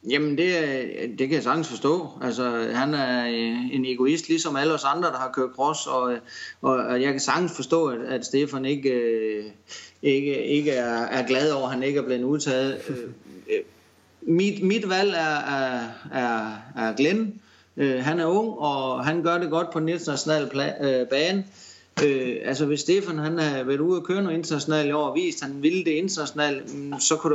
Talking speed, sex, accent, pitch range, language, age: 175 wpm, male, native, 130-165 Hz, Danish, 30-49